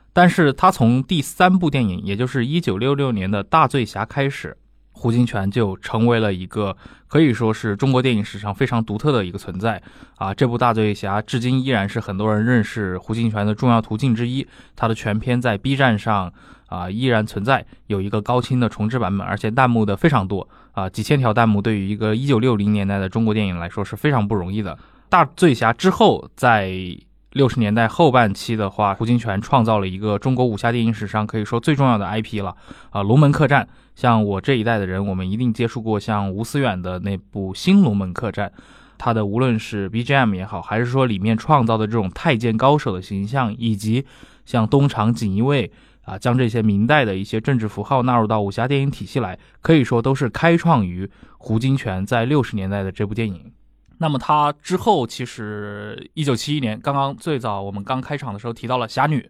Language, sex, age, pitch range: Chinese, male, 20-39, 105-130 Hz